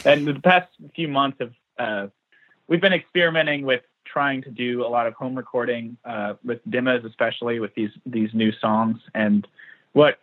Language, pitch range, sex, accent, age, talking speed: English, 110-135 Hz, male, American, 20-39, 175 wpm